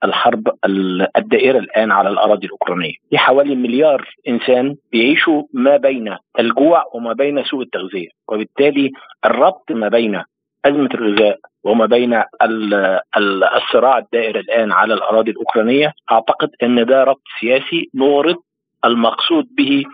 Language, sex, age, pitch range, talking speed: Arabic, male, 50-69, 120-170 Hz, 120 wpm